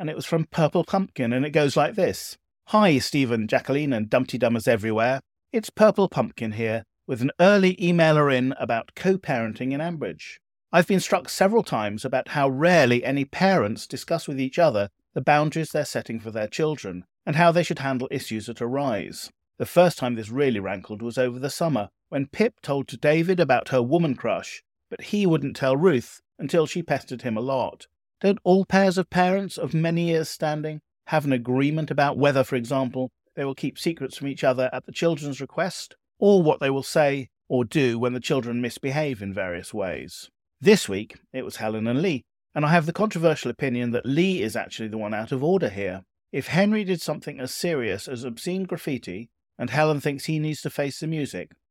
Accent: British